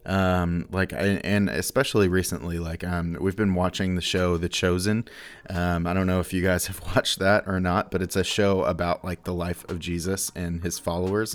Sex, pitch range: male, 85-100 Hz